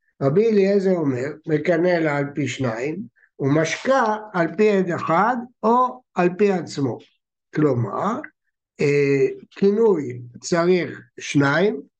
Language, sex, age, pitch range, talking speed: Hebrew, male, 60-79, 160-220 Hz, 105 wpm